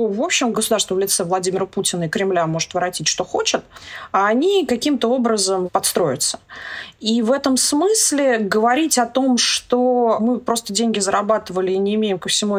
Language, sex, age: Russian, female, 20-39